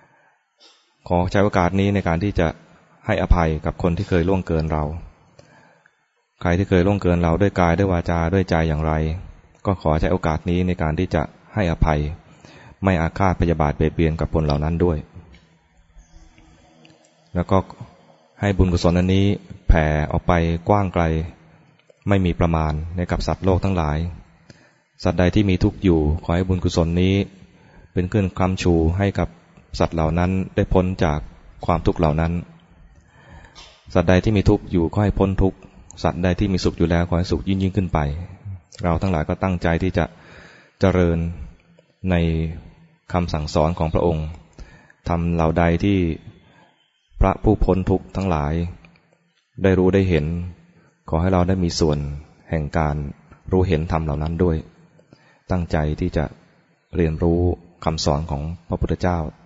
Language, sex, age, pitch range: English, male, 20-39, 80-95 Hz